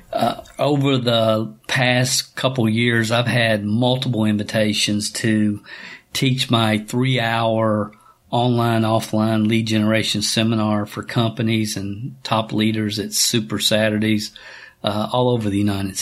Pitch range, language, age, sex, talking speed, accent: 110-120 Hz, English, 40-59, male, 125 wpm, American